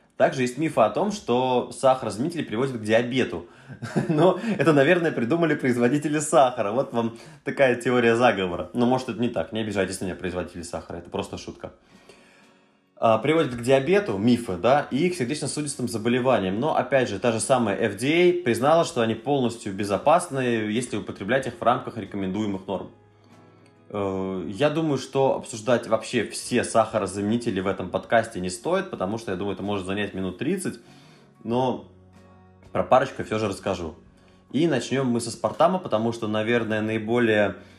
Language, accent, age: Russian, native, 20-39